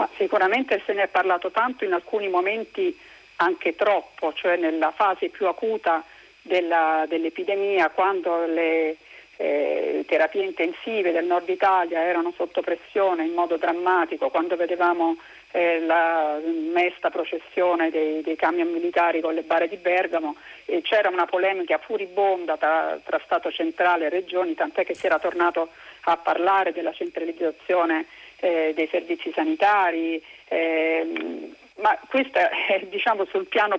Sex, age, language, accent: female, 40-59, Italian, native